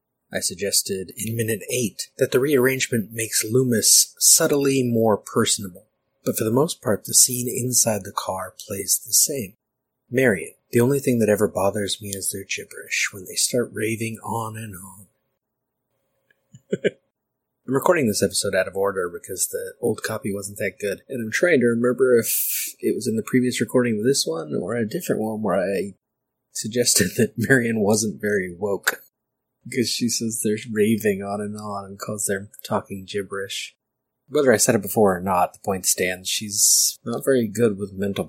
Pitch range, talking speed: 100-120 Hz, 180 wpm